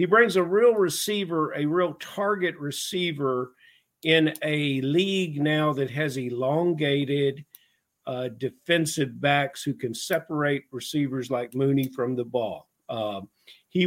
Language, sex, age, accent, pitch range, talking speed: English, male, 50-69, American, 140-175 Hz, 130 wpm